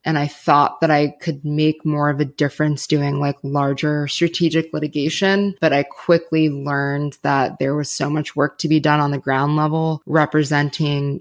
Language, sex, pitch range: English, female, 145-160 Hz